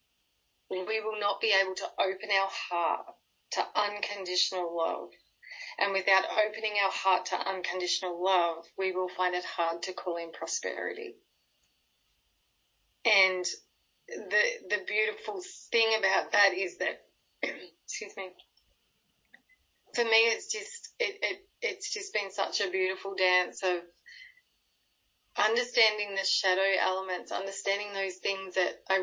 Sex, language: female, English